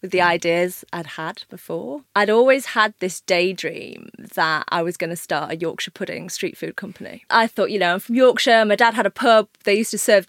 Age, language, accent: 20-39, English, British